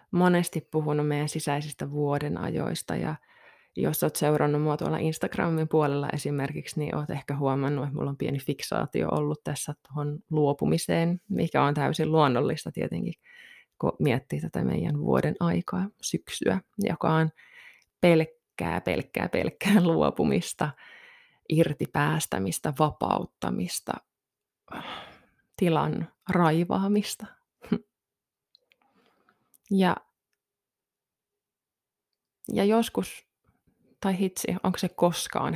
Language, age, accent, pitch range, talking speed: Finnish, 20-39, native, 145-180 Hz, 95 wpm